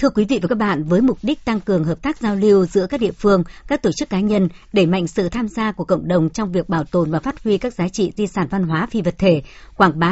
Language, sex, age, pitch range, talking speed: Vietnamese, male, 60-79, 170-210 Hz, 300 wpm